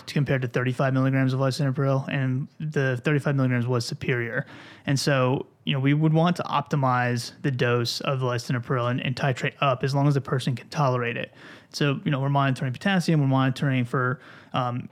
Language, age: English, 30-49